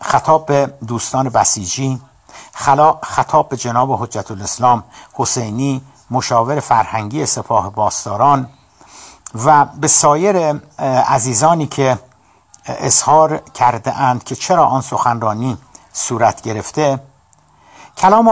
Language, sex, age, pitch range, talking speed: Persian, male, 60-79, 120-160 Hz, 95 wpm